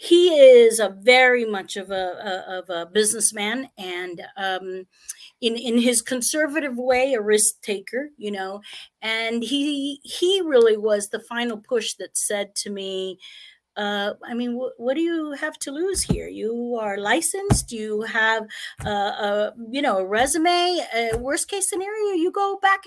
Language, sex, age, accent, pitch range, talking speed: English, female, 40-59, American, 210-285 Hz, 165 wpm